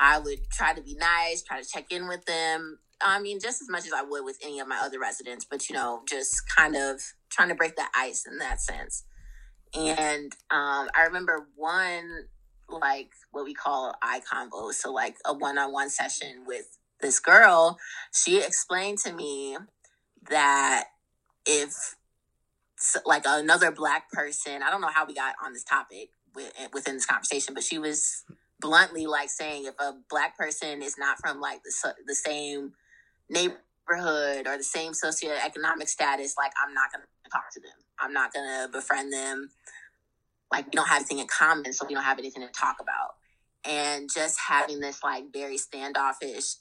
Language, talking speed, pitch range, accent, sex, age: English, 180 wpm, 140-165 Hz, American, female, 20-39